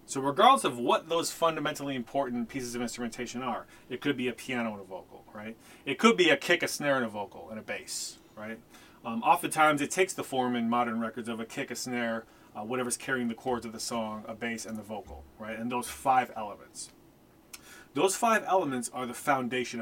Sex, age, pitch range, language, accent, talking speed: male, 30-49, 115-145 Hz, English, American, 220 wpm